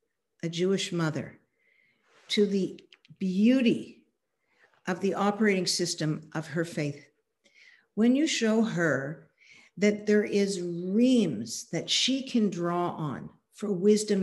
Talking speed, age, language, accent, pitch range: 120 wpm, 50-69, English, American, 185-240 Hz